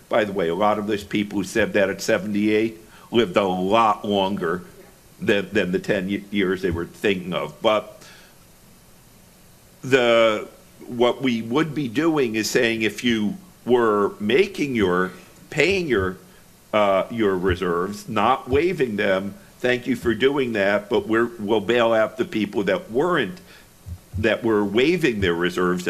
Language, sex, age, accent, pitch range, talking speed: English, male, 50-69, American, 100-120 Hz, 155 wpm